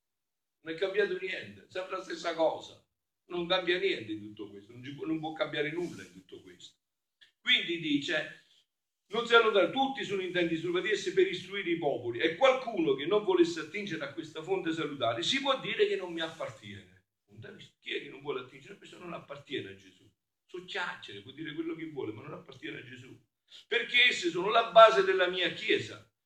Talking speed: 195 wpm